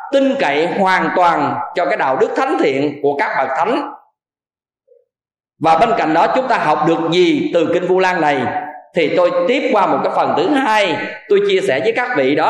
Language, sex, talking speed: Vietnamese, male, 210 wpm